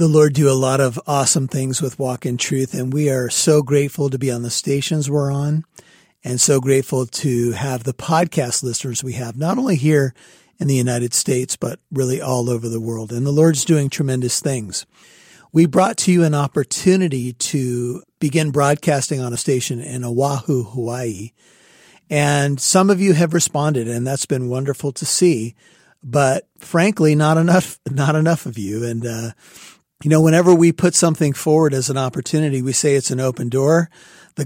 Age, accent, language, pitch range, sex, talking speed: 40-59, American, English, 125-155 Hz, male, 185 wpm